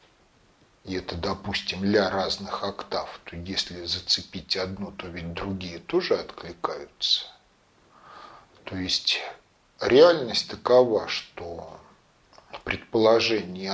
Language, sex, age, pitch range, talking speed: Russian, male, 40-59, 95-135 Hz, 90 wpm